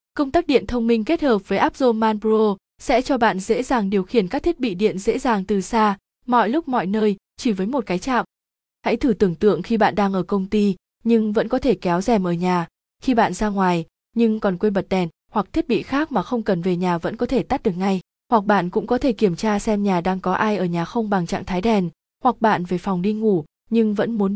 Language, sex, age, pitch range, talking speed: Vietnamese, female, 20-39, 195-240 Hz, 255 wpm